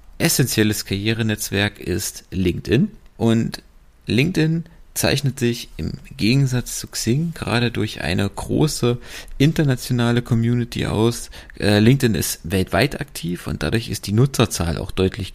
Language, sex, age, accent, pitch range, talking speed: German, male, 40-59, German, 100-130 Hz, 115 wpm